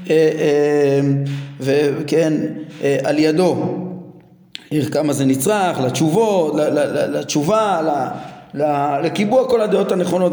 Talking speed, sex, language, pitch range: 65 wpm, male, Hebrew, 170-220 Hz